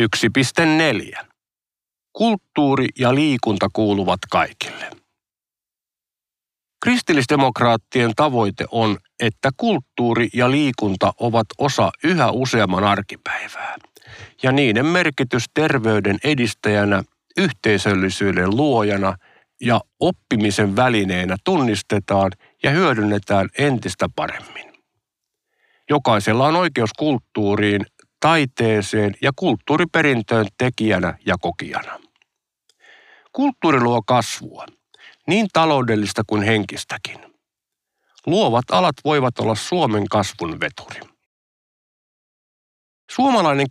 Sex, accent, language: male, native, Finnish